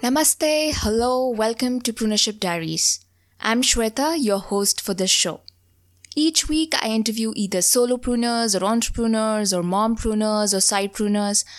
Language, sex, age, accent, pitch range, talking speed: English, female, 20-39, Indian, 180-230 Hz, 145 wpm